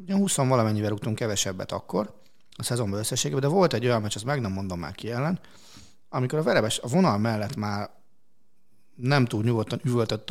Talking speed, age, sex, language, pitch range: 180 wpm, 30-49, male, Hungarian, 105-140 Hz